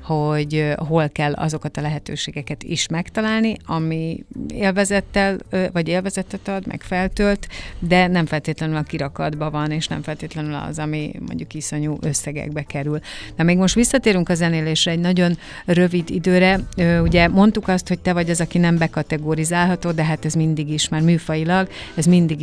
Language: Hungarian